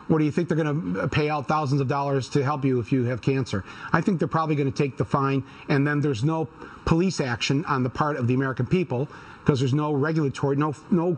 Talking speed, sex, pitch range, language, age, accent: 240 wpm, male, 140-175 Hz, English, 40-59, American